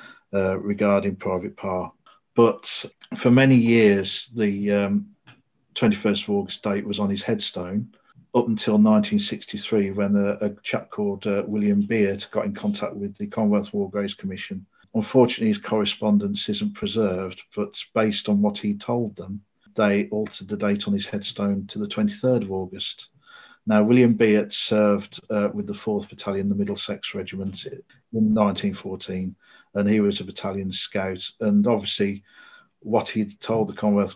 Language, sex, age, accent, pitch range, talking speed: English, male, 50-69, British, 100-125 Hz, 155 wpm